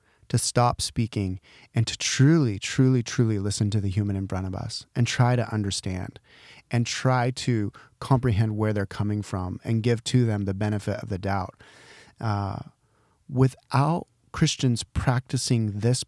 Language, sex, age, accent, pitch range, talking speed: English, male, 30-49, American, 105-130 Hz, 155 wpm